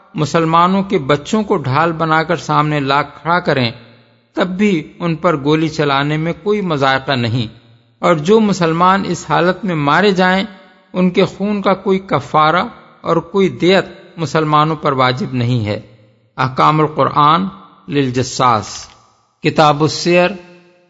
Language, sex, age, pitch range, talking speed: Urdu, male, 50-69, 145-185 Hz, 140 wpm